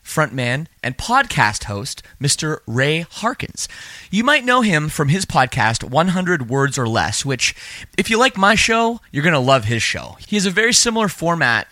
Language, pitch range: English, 115-165 Hz